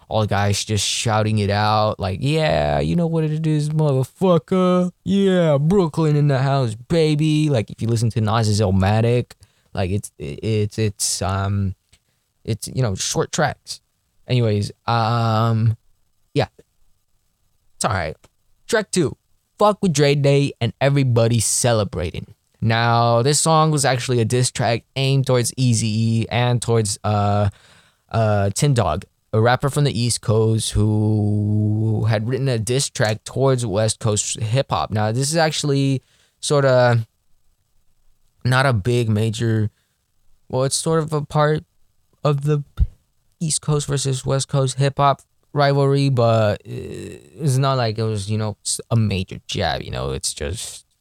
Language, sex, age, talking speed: English, male, 20-39, 145 wpm